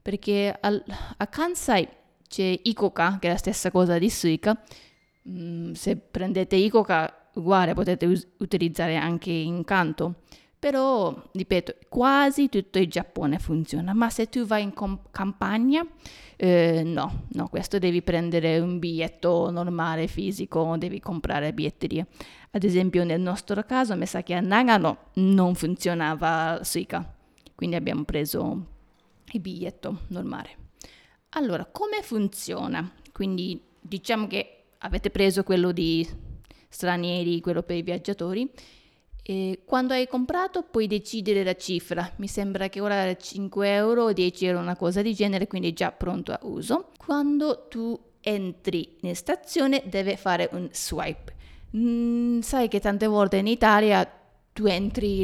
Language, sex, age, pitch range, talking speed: Italian, female, 20-39, 175-210 Hz, 140 wpm